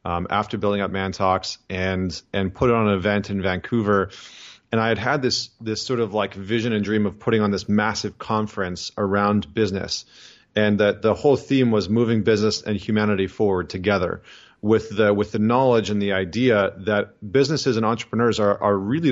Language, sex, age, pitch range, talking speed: English, male, 30-49, 100-120 Hz, 190 wpm